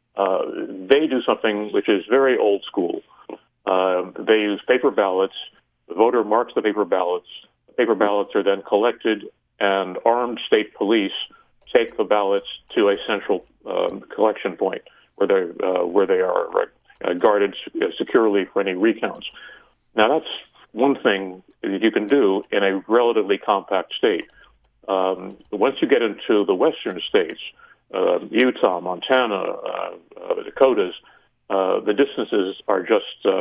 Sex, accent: male, American